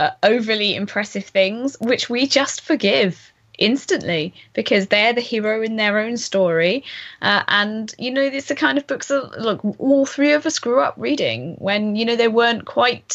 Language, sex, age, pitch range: English, female, 20-39, 195-250 Hz